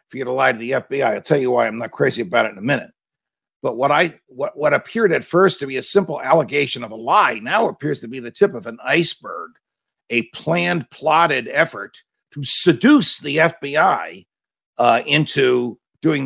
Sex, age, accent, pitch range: male, 50-69, American, 130-185 Hz